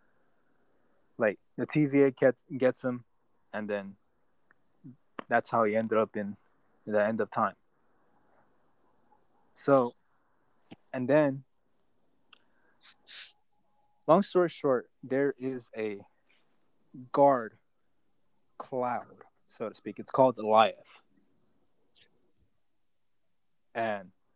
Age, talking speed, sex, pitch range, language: 20-39, 90 wpm, male, 110-135 Hz, English